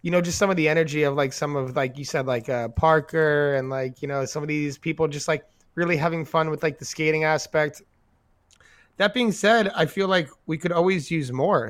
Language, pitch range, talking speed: English, 135-165 Hz, 240 wpm